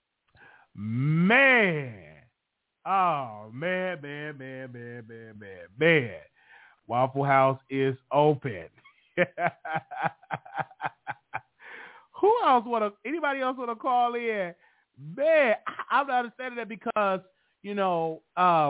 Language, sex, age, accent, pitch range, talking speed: English, male, 30-49, American, 120-160 Hz, 95 wpm